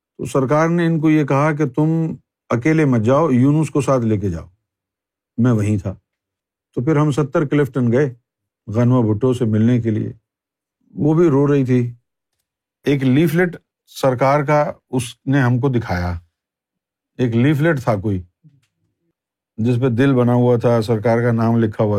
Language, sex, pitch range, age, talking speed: Urdu, male, 110-150 Hz, 50-69, 170 wpm